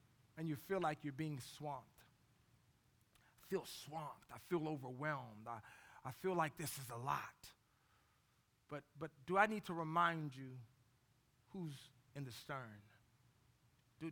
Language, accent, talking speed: English, American, 145 wpm